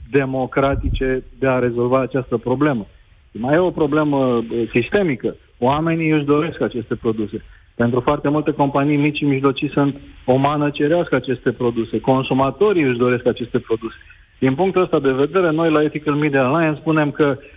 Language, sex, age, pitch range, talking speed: Romanian, male, 40-59, 130-160 Hz, 155 wpm